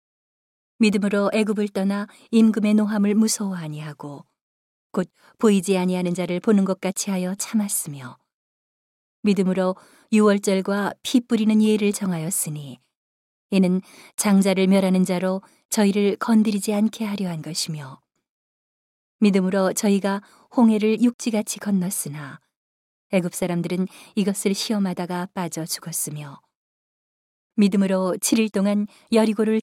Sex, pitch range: female, 180-215 Hz